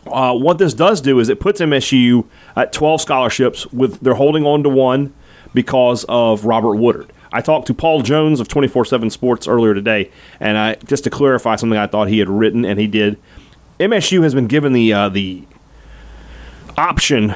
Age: 30-49